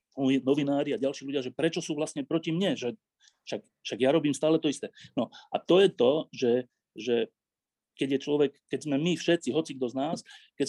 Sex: male